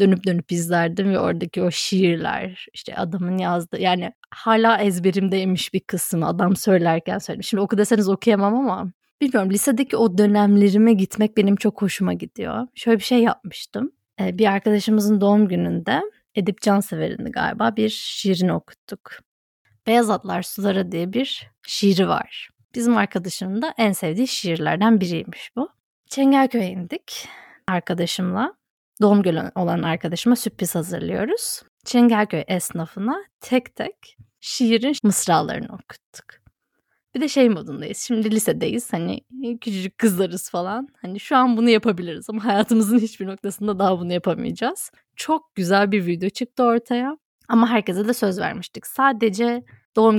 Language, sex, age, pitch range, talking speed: Turkish, female, 20-39, 185-230 Hz, 135 wpm